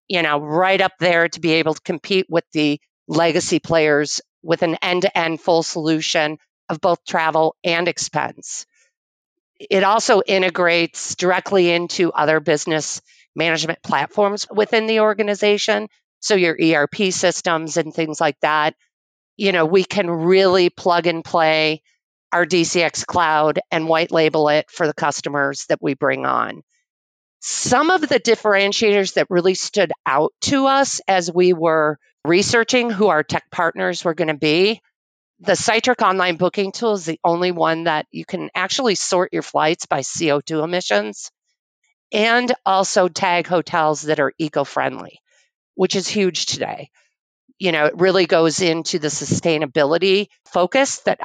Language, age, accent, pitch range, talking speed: English, 40-59, American, 160-195 Hz, 150 wpm